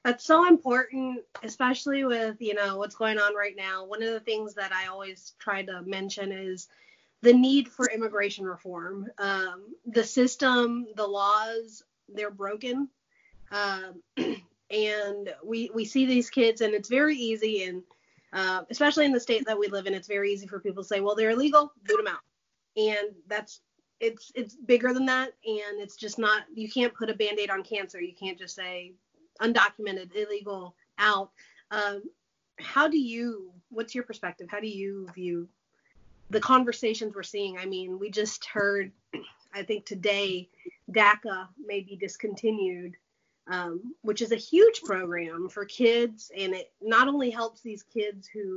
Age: 30-49